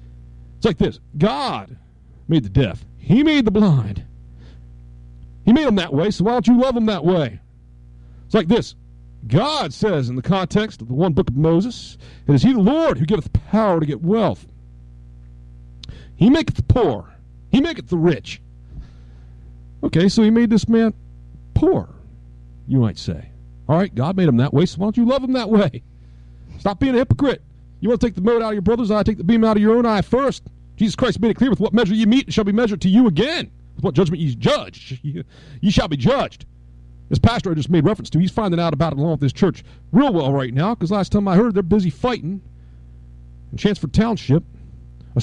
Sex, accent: male, American